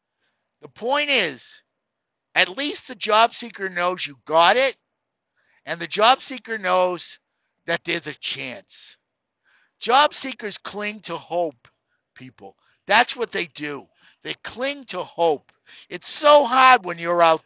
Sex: male